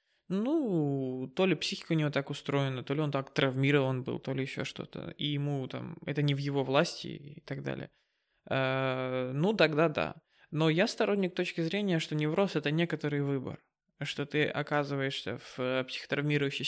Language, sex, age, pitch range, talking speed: Russian, male, 20-39, 140-165 Hz, 175 wpm